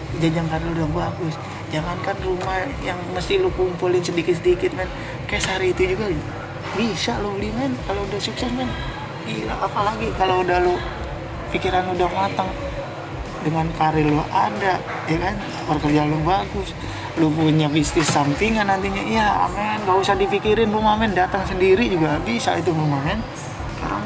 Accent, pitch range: native, 150-180 Hz